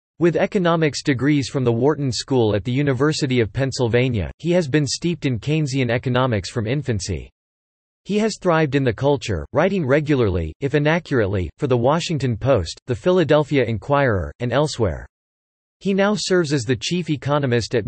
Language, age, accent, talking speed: English, 40-59, American, 160 wpm